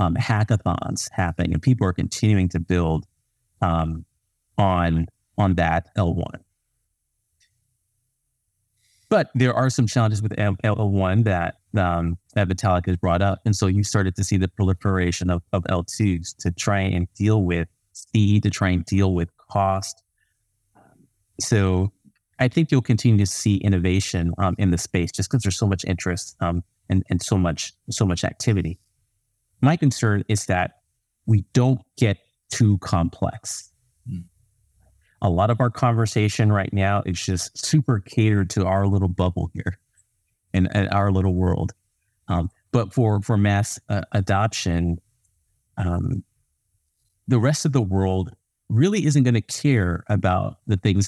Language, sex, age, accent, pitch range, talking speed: English, male, 30-49, American, 90-110 Hz, 150 wpm